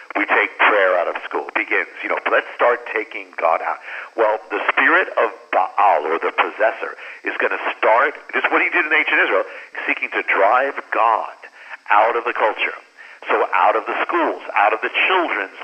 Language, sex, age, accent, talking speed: English, male, 50-69, American, 195 wpm